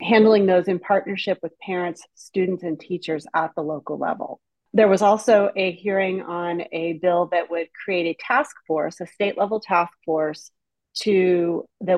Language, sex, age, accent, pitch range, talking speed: English, female, 30-49, American, 160-190 Hz, 165 wpm